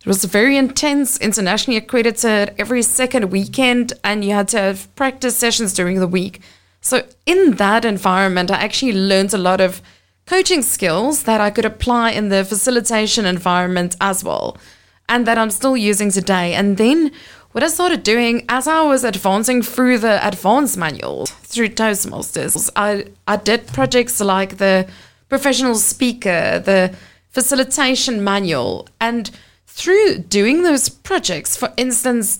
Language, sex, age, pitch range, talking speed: English, female, 20-39, 205-260 Hz, 150 wpm